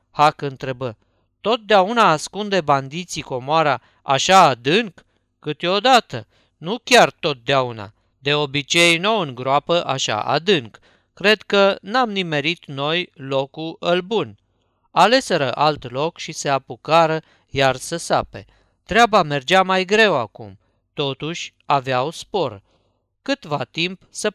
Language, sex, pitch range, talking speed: Romanian, male, 130-190 Hz, 115 wpm